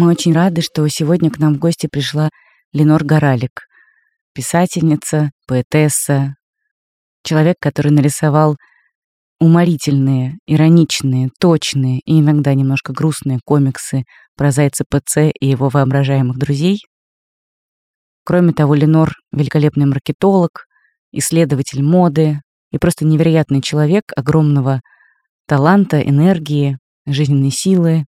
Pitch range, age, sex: 140-170 Hz, 20-39, female